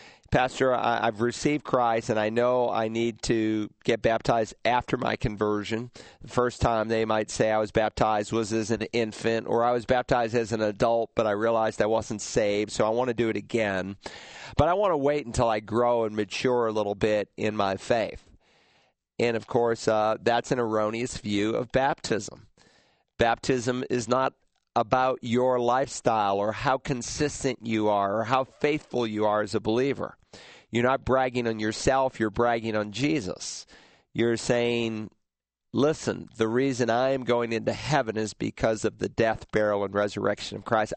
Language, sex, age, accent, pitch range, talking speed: English, male, 40-59, American, 110-125 Hz, 180 wpm